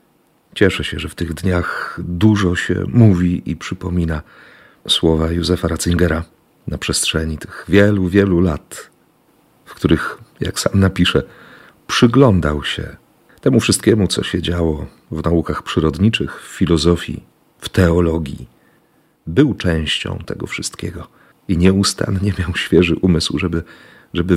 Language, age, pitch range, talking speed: Polish, 40-59, 85-105 Hz, 125 wpm